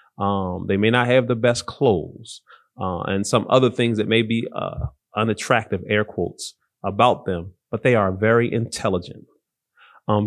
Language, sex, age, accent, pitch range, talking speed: English, male, 30-49, American, 110-150 Hz, 165 wpm